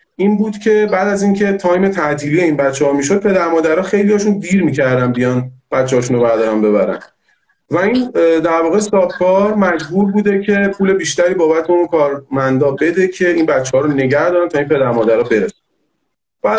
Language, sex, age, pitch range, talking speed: Persian, male, 40-59, 145-200 Hz, 190 wpm